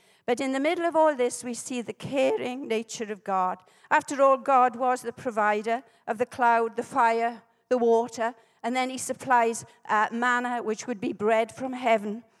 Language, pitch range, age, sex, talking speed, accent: English, 230-295 Hz, 50-69, female, 190 wpm, British